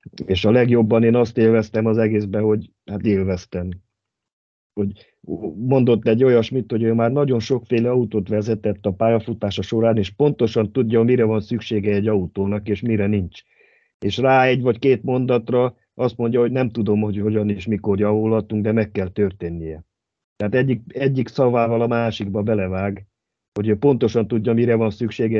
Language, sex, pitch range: Hungarian, male, 100-115 Hz